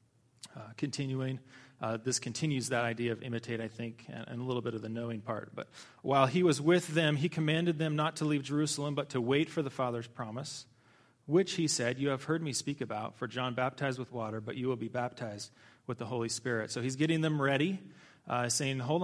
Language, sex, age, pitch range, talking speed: English, male, 30-49, 125-155 Hz, 225 wpm